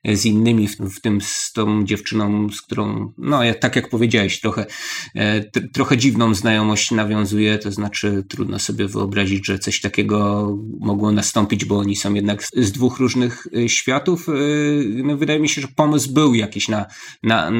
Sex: male